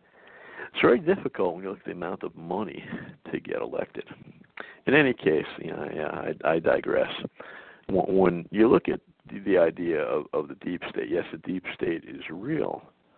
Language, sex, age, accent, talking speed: English, male, 50-69, American, 180 wpm